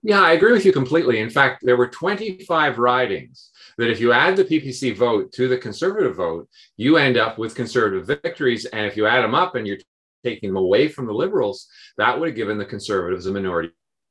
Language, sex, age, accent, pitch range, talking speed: English, male, 50-69, American, 110-145 Hz, 215 wpm